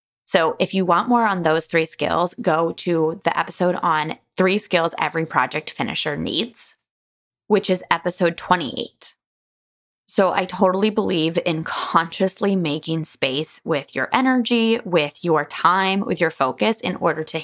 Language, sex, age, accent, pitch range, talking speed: English, female, 20-39, American, 165-225 Hz, 150 wpm